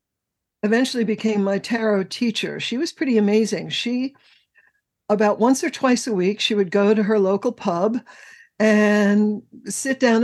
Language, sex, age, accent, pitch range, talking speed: English, female, 60-79, American, 195-245 Hz, 150 wpm